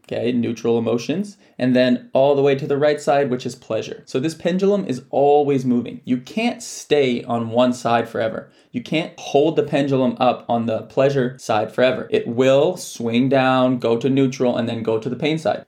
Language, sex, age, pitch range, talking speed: English, male, 20-39, 125-155 Hz, 205 wpm